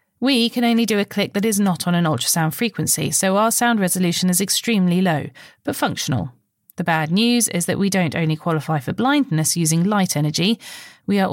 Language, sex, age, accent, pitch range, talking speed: English, female, 30-49, British, 160-220 Hz, 200 wpm